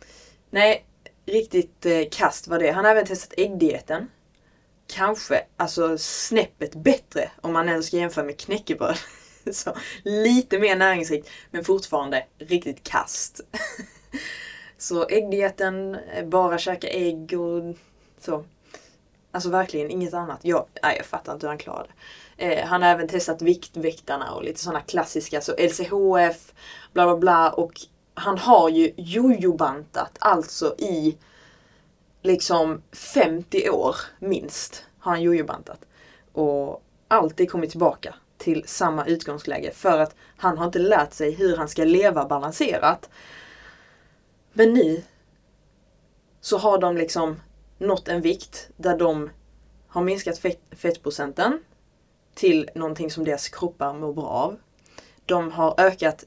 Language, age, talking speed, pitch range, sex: Swedish, 20-39, 125 wpm, 160-190 Hz, female